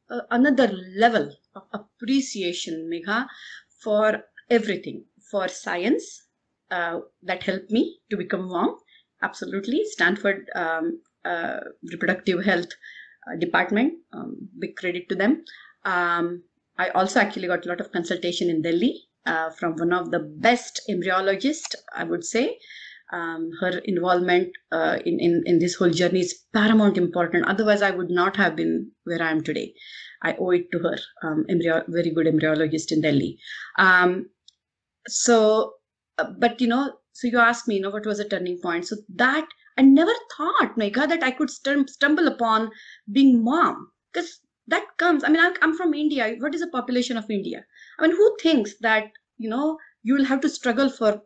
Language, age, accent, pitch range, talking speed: English, 30-49, Indian, 180-275 Hz, 170 wpm